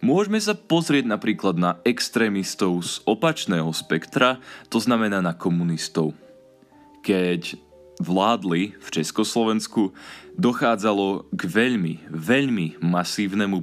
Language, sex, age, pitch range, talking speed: Slovak, male, 20-39, 90-115 Hz, 95 wpm